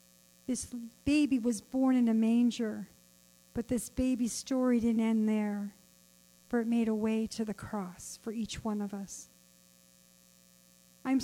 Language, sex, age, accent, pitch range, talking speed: English, female, 50-69, American, 215-255 Hz, 150 wpm